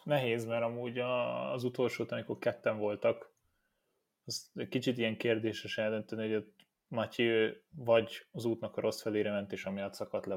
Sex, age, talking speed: male, 20-39, 170 wpm